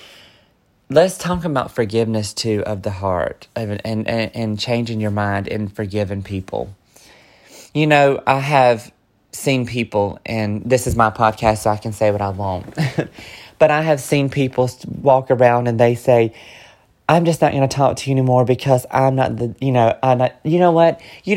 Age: 30-49